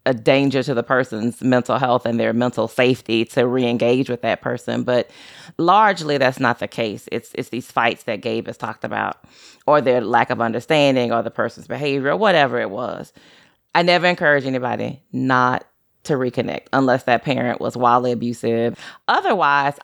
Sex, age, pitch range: female, 30-49, 125-160 Hz